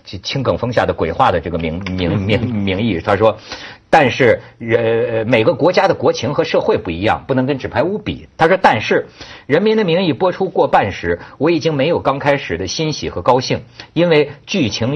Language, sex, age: Chinese, male, 50-69